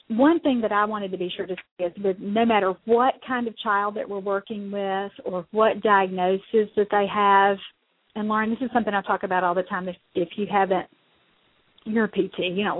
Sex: female